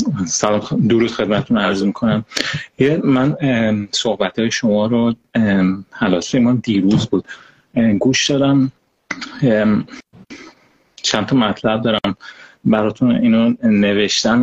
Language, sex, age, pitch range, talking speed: Persian, male, 30-49, 105-130 Hz, 95 wpm